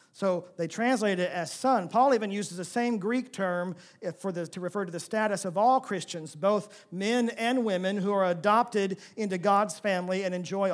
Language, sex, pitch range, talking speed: English, male, 200-260 Hz, 195 wpm